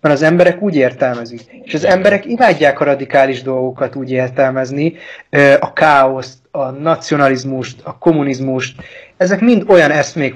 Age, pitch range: 30-49, 130-165 Hz